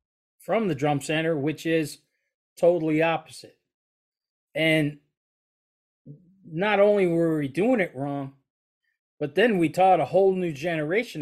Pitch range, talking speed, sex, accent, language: 125-155 Hz, 130 wpm, male, American, English